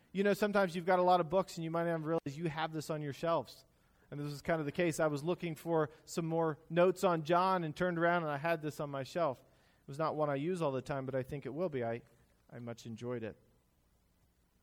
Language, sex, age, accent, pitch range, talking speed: English, male, 40-59, American, 135-185 Hz, 270 wpm